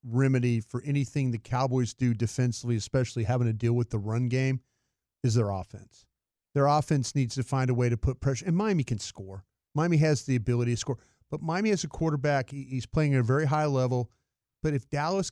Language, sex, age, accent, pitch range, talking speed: English, male, 40-59, American, 120-145 Hz, 210 wpm